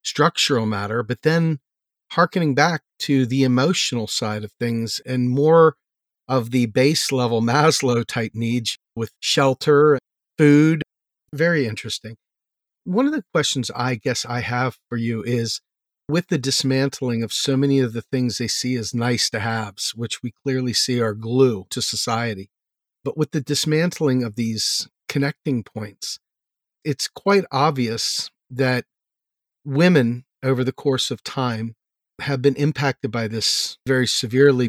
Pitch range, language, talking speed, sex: 115-140 Hz, English, 145 wpm, male